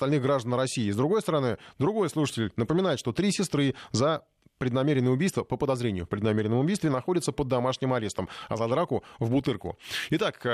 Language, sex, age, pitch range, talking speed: Russian, male, 20-39, 115-155 Hz, 170 wpm